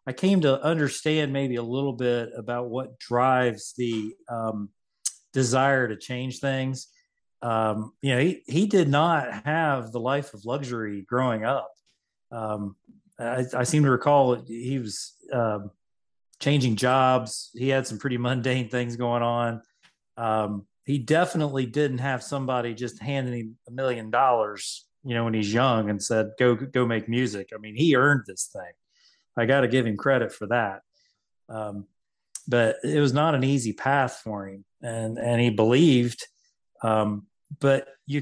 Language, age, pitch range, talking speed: English, 40-59, 115-135 Hz, 165 wpm